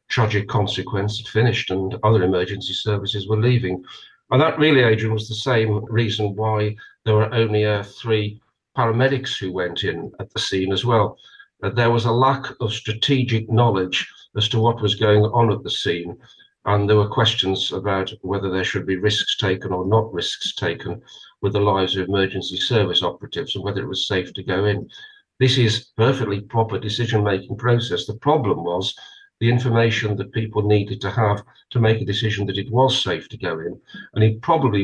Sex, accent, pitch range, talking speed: male, British, 100-120 Hz, 190 wpm